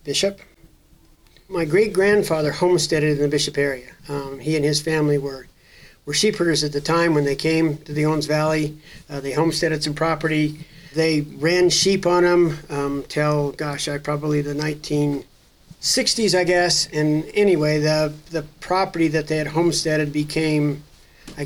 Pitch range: 150-170 Hz